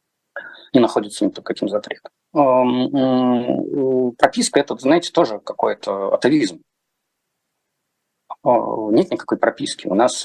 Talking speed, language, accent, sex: 105 wpm, Russian, native, male